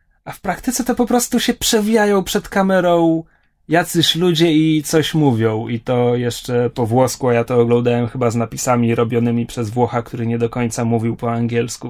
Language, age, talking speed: Polish, 30-49, 185 wpm